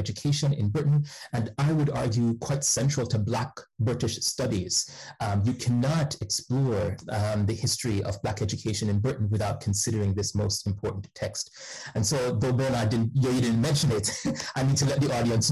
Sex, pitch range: male, 105-130 Hz